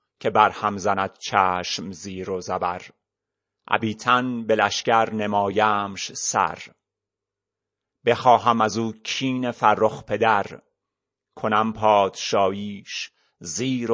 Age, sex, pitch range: 30-49, male, 105-135 Hz